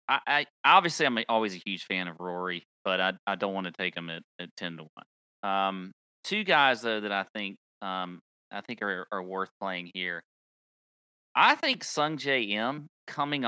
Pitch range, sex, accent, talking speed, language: 95-135 Hz, male, American, 190 wpm, English